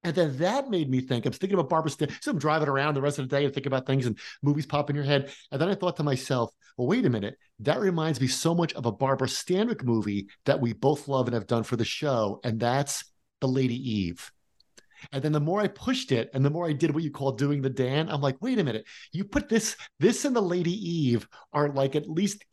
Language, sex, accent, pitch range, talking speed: English, male, American, 130-160 Hz, 265 wpm